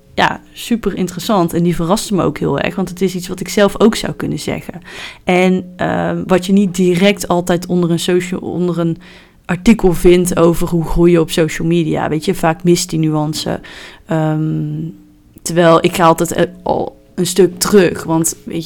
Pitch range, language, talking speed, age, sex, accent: 170-195 Hz, Dutch, 190 wpm, 20-39, female, Dutch